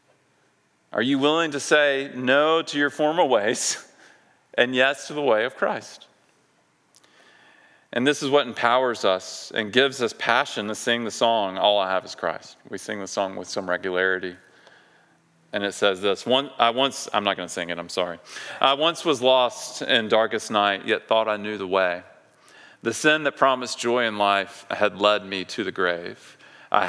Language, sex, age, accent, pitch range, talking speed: English, male, 40-59, American, 95-125 Hz, 185 wpm